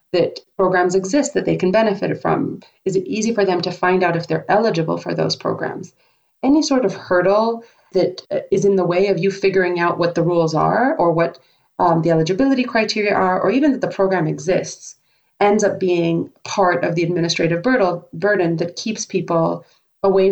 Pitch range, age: 170-210 Hz, 30-49